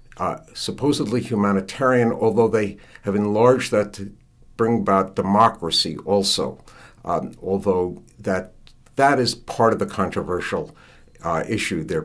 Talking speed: 125 wpm